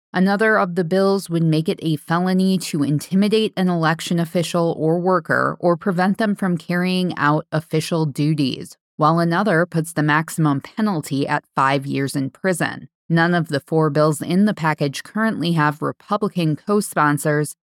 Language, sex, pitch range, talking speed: English, female, 155-180 Hz, 160 wpm